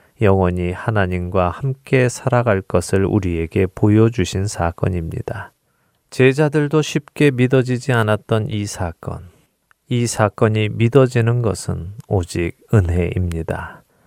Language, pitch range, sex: Korean, 95-125 Hz, male